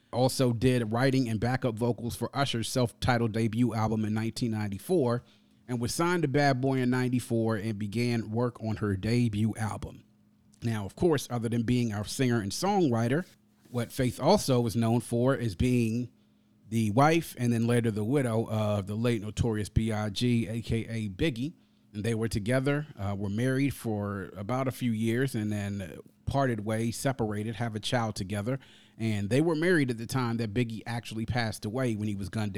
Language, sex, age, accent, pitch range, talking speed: English, male, 30-49, American, 110-125 Hz, 180 wpm